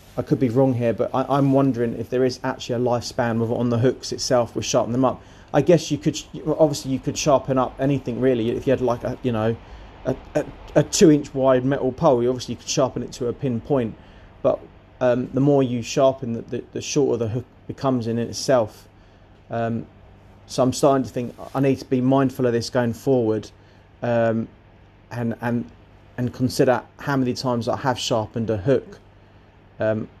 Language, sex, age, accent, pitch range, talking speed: English, male, 30-49, British, 110-130 Hz, 205 wpm